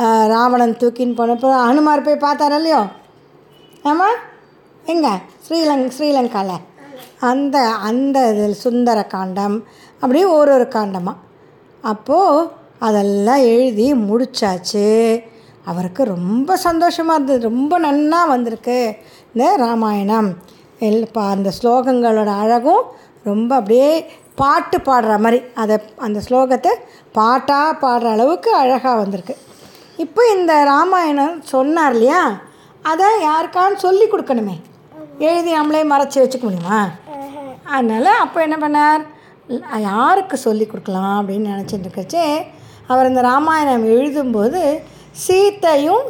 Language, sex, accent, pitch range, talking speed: Tamil, female, native, 220-300 Hz, 100 wpm